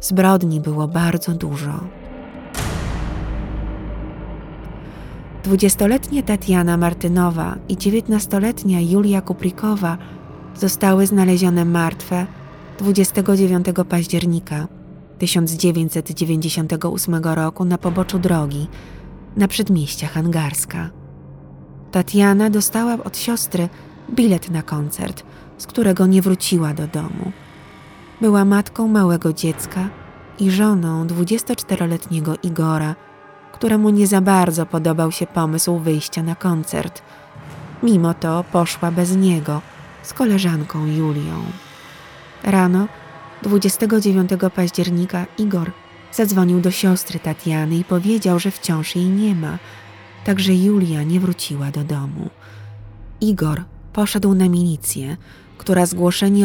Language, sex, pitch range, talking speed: Polish, female, 160-195 Hz, 95 wpm